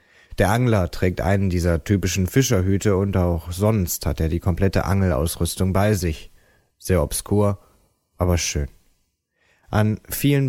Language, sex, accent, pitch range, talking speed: German, male, German, 85-110 Hz, 130 wpm